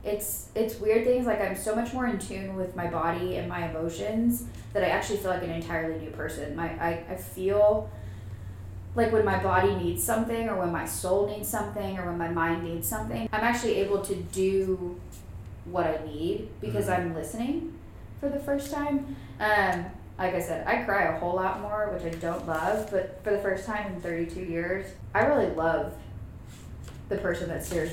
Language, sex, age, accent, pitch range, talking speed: English, female, 10-29, American, 155-200 Hz, 200 wpm